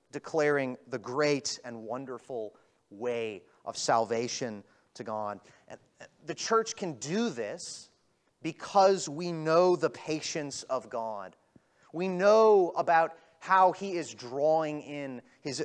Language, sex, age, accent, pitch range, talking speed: English, male, 30-49, American, 130-175 Hz, 125 wpm